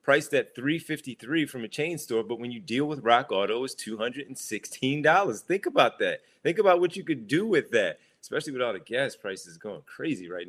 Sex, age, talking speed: male, 30-49, 205 wpm